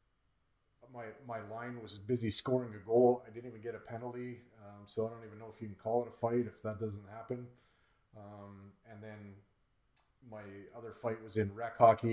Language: English